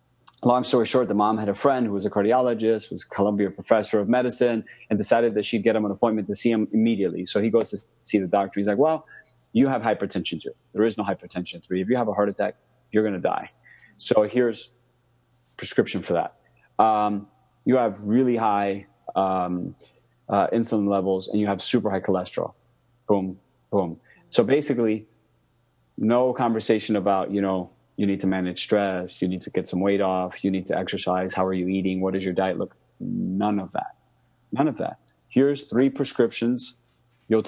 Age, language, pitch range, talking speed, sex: 30-49, English, 95-120 Hz, 195 wpm, male